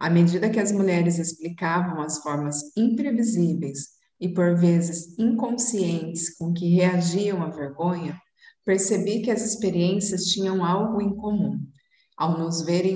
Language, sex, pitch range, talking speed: Portuguese, female, 170-210 Hz, 135 wpm